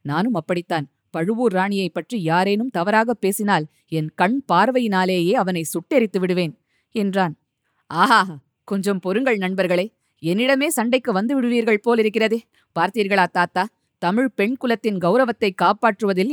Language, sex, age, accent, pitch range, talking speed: Tamil, female, 20-39, native, 180-225 Hz, 115 wpm